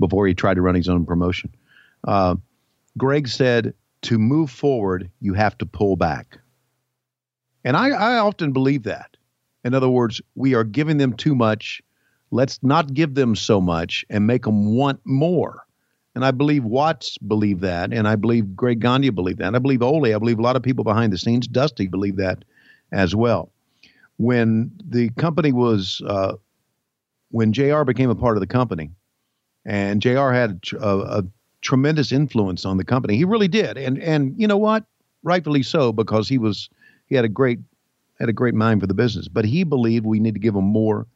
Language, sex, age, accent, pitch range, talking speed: English, male, 50-69, American, 95-130 Hz, 190 wpm